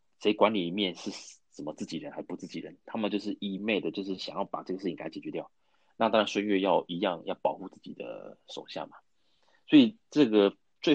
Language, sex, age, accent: Chinese, male, 30-49, native